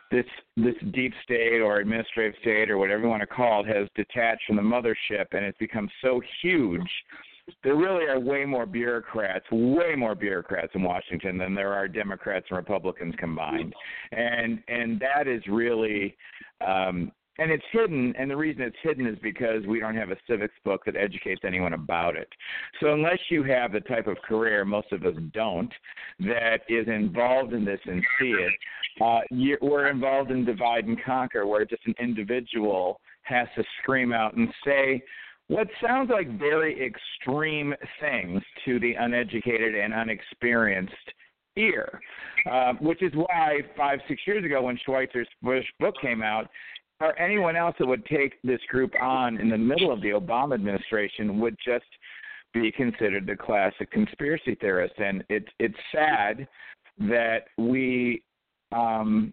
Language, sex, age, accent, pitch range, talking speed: English, male, 50-69, American, 105-130 Hz, 165 wpm